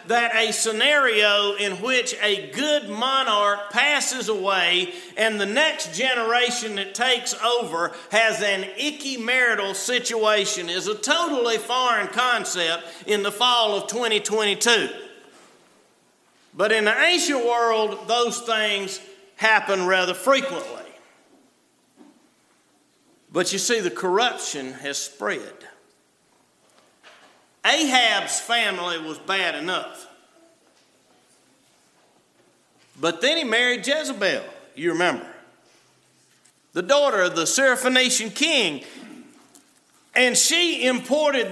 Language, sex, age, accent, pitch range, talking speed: English, male, 50-69, American, 210-285 Hz, 100 wpm